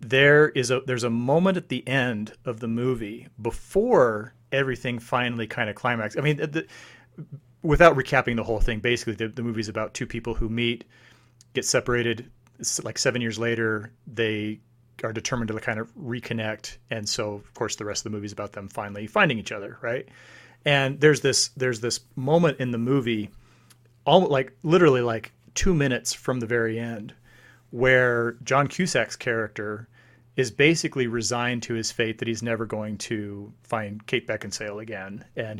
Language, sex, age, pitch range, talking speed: English, male, 30-49, 115-135 Hz, 180 wpm